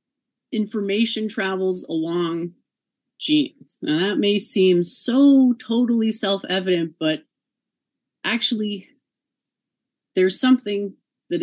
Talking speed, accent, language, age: 90 wpm, American, English, 30-49